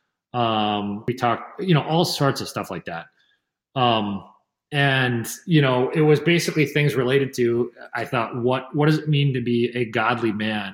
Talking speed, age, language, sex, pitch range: 185 wpm, 30-49, English, male, 120-145 Hz